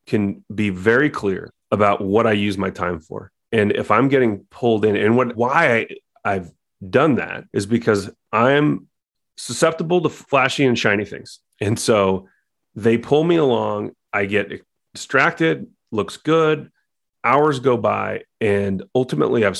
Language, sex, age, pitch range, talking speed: English, male, 30-49, 95-130 Hz, 150 wpm